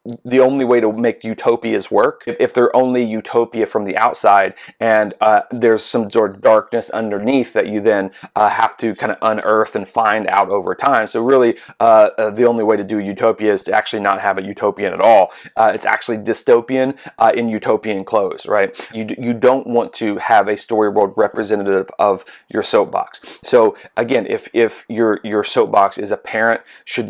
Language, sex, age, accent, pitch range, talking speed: English, male, 30-49, American, 110-120 Hz, 195 wpm